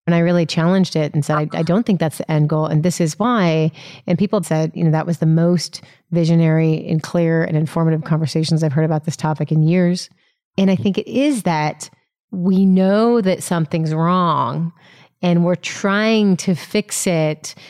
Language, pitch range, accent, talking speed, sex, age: English, 165-185 Hz, American, 200 wpm, female, 30-49